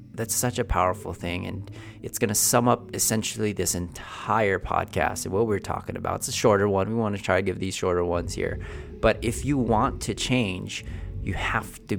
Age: 30-49